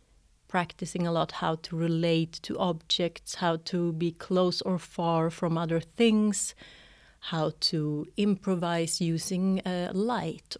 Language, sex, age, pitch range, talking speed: English, female, 30-49, 160-185 Hz, 130 wpm